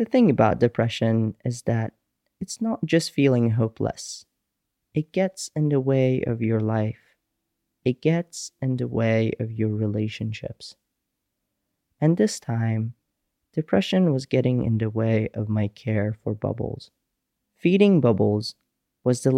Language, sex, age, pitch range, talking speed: English, male, 30-49, 110-155 Hz, 140 wpm